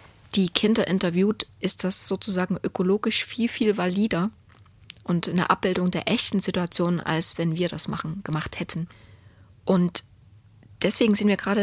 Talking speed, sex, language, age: 145 wpm, female, German, 20-39